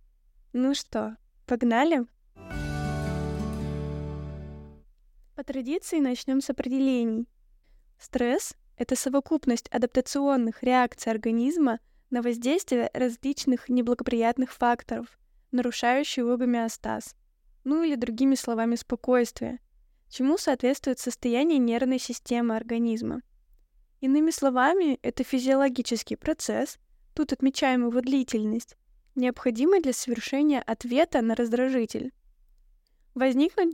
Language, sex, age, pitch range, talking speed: Russian, female, 10-29, 235-270 Hz, 85 wpm